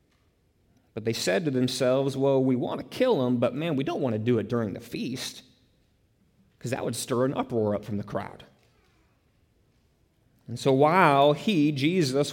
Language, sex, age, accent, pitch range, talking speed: English, male, 30-49, American, 120-155 Hz, 180 wpm